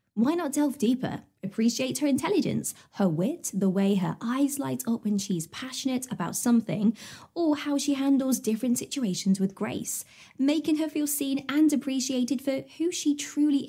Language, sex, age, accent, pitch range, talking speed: English, female, 20-39, British, 205-280 Hz, 165 wpm